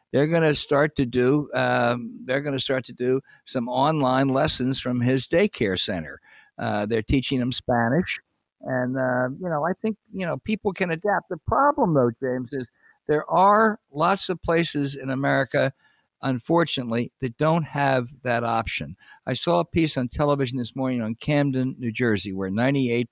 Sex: male